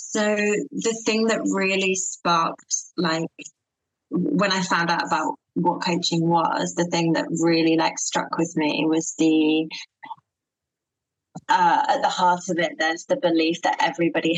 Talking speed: 150 wpm